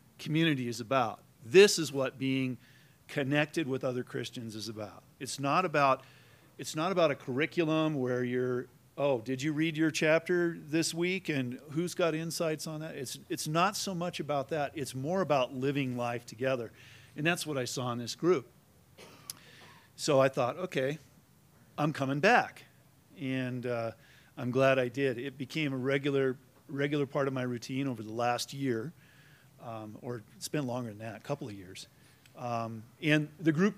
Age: 50-69